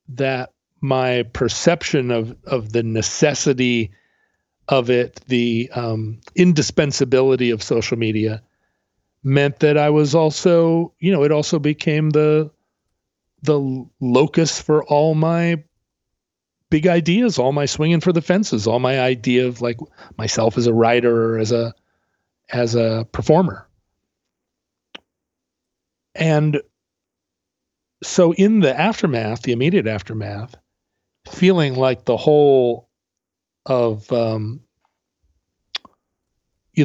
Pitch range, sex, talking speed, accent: 115-150 Hz, male, 110 wpm, American